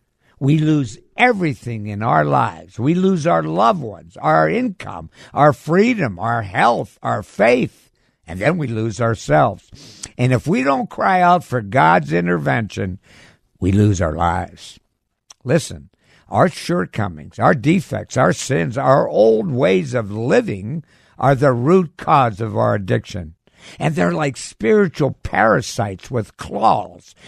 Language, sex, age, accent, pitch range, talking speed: English, male, 60-79, American, 100-155 Hz, 140 wpm